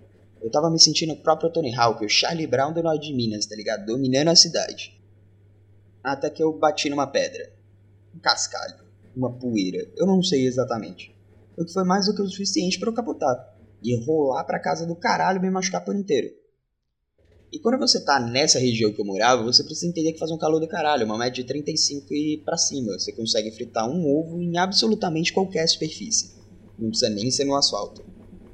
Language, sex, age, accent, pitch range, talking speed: Portuguese, male, 20-39, Brazilian, 120-180 Hz, 200 wpm